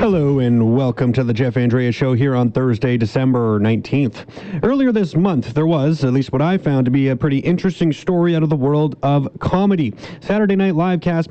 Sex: male